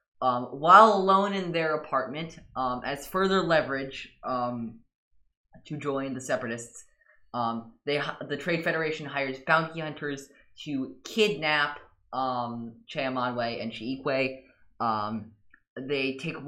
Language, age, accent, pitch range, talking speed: English, 20-39, American, 120-150 Hz, 115 wpm